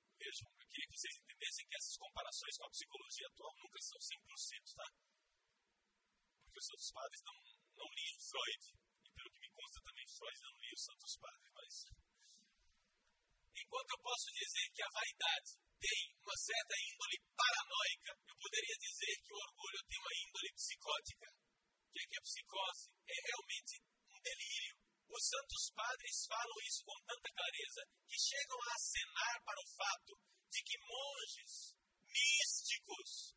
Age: 40-59